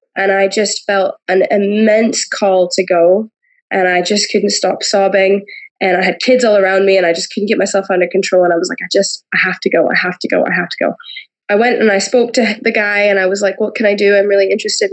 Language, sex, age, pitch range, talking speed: English, female, 20-39, 195-245 Hz, 270 wpm